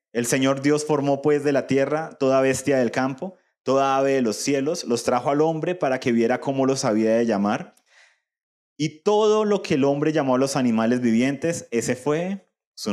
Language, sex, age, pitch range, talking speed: Spanish, male, 30-49, 125-185 Hz, 200 wpm